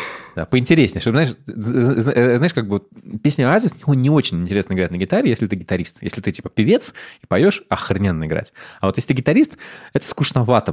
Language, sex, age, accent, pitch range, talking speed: Russian, male, 20-39, native, 90-125 Hz, 185 wpm